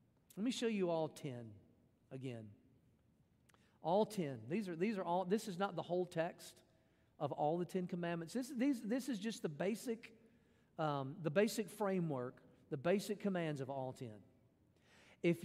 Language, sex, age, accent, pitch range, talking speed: English, male, 50-69, American, 155-230 Hz, 165 wpm